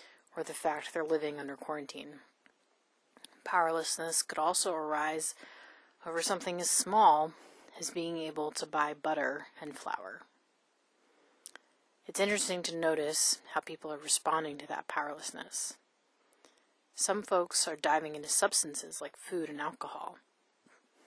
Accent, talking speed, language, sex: American, 125 wpm, English, female